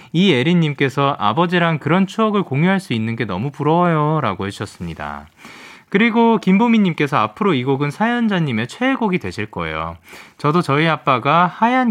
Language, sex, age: Korean, male, 20-39